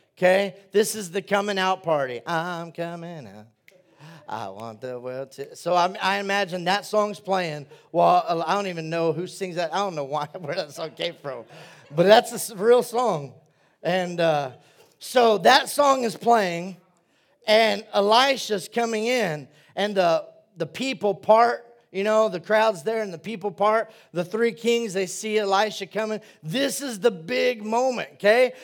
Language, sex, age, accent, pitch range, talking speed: English, male, 40-59, American, 165-225 Hz, 170 wpm